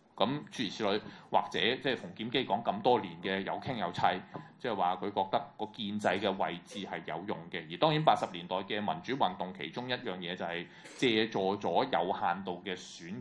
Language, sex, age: Chinese, male, 20-39